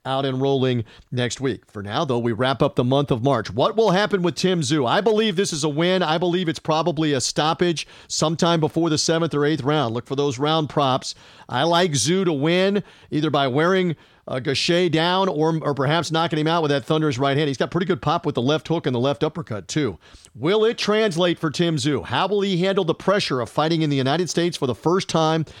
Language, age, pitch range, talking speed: English, 40-59, 135-170 Hz, 240 wpm